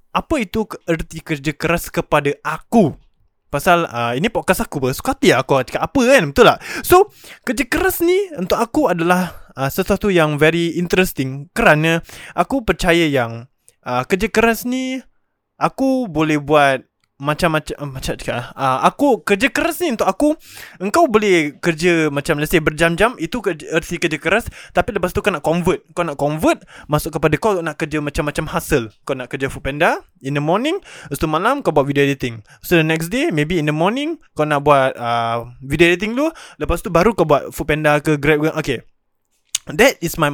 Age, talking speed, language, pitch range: 20-39, 180 wpm, Malay, 150-200 Hz